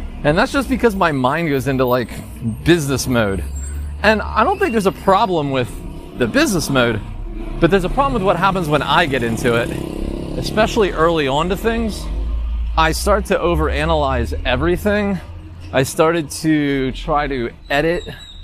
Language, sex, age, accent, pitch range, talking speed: English, male, 30-49, American, 105-150 Hz, 165 wpm